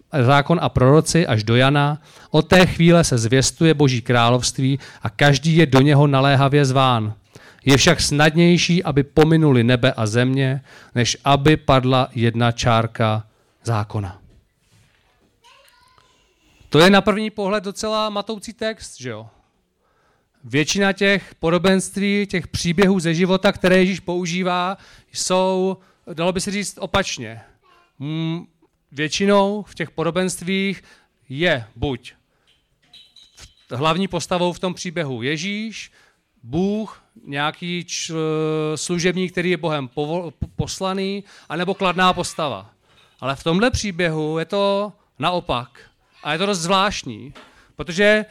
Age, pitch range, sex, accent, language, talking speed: 40-59, 135-195 Hz, male, native, Czech, 120 wpm